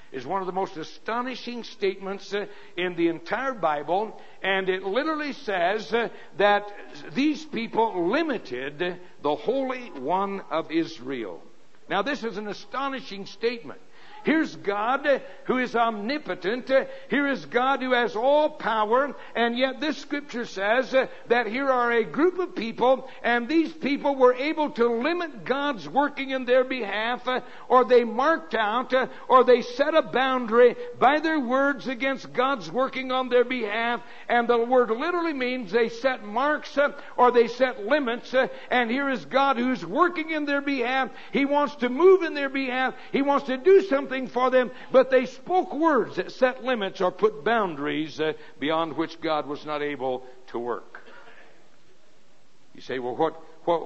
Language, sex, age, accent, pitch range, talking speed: English, male, 60-79, American, 195-270 Hz, 160 wpm